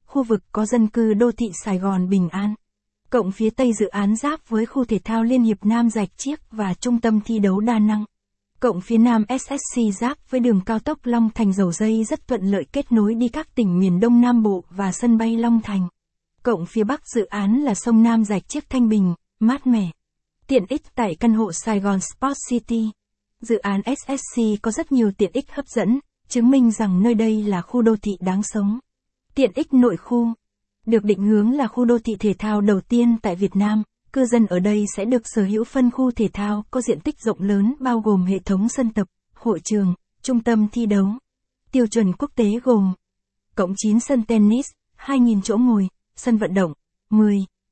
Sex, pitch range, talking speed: female, 205-240 Hz, 215 wpm